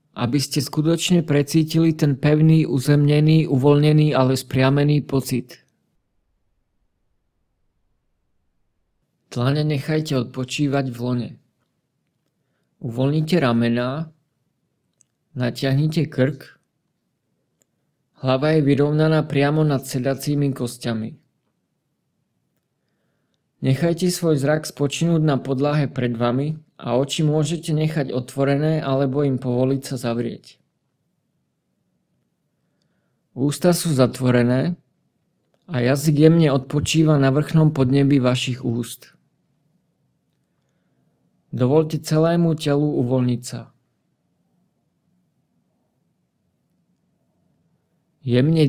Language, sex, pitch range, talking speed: English, male, 130-155 Hz, 75 wpm